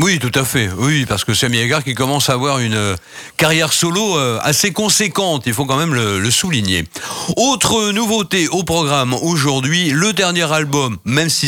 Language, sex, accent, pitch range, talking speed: French, male, French, 130-180 Hz, 195 wpm